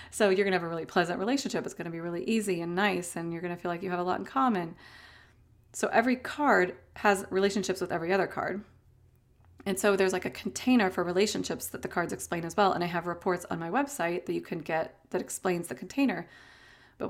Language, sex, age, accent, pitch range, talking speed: English, female, 30-49, American, 175-200 Hz, 240 wpm